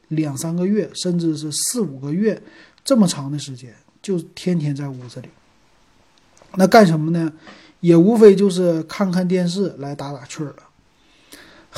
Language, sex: Chinese, male